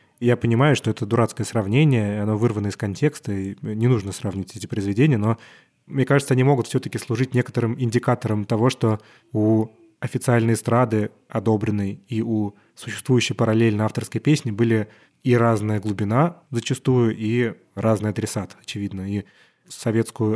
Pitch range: 110-130 Hz